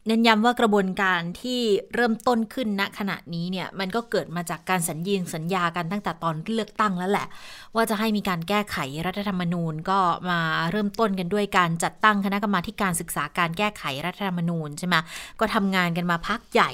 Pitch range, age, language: 170-215 Hz, 20-39, Thai